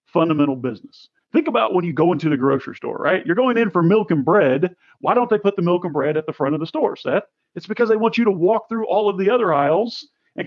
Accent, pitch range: American, 155-210 Hz